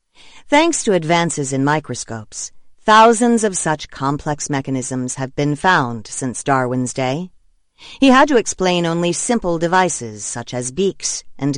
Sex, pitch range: female, 130-185 Hz